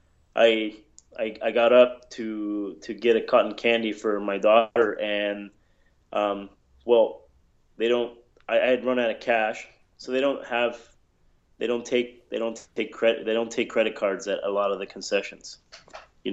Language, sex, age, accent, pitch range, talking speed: English, male, 20-39, American, 100-120 Hz, 180 wpm